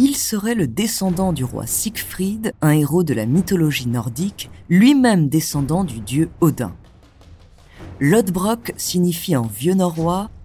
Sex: female